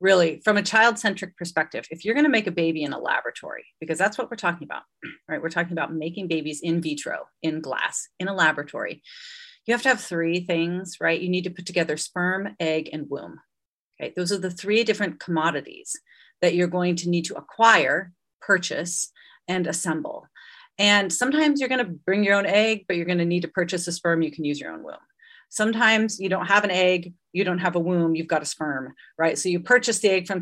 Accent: American